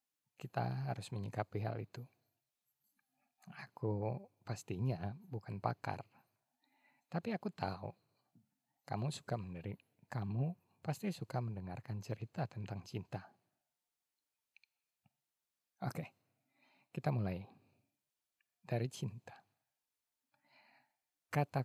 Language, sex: Indonesian, male